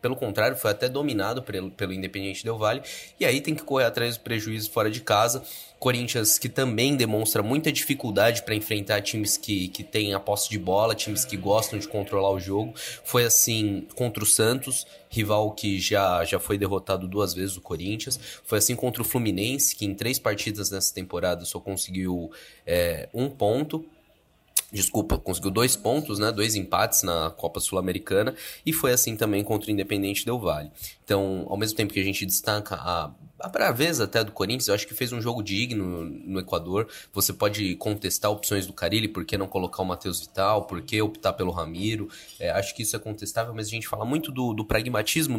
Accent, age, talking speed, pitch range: Brazilian, 20-39, 200 wpm, 100-120 Hz